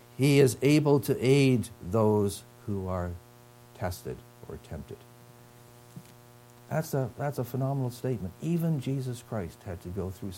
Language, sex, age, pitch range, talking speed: English, male, 60-79, 105-125 Hz, 140 wpm